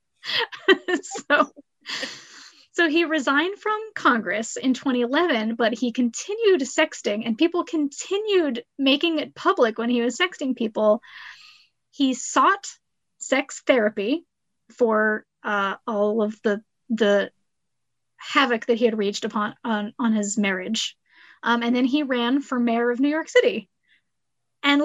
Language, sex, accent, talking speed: English, female, American, 135 wpm